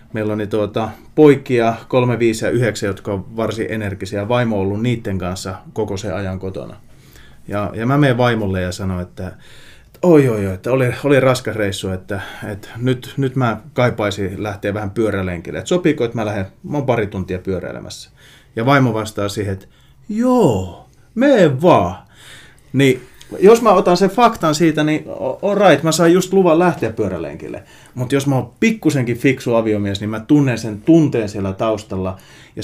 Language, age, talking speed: Finnish, 30-49, 175 wpm